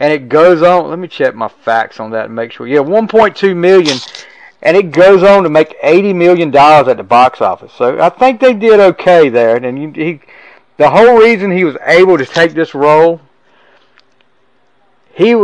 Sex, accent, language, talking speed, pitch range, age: male, American, English, 190 wpm, 135-180 Hz, 40-59